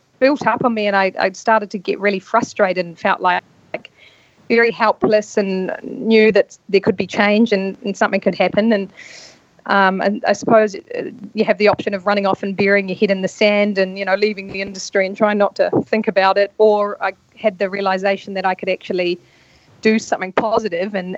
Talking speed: 215 wpm